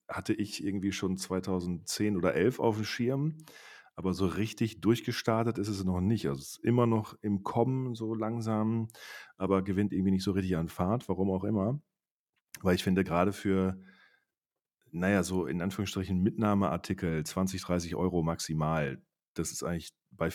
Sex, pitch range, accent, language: male, 85-100 Hz, German, German